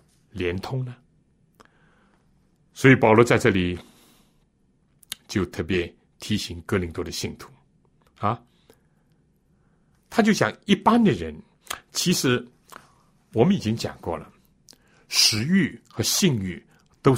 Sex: male